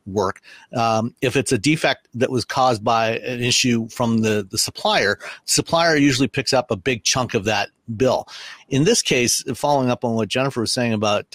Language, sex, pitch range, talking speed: English, male, 110-135 Hz, 195 wpm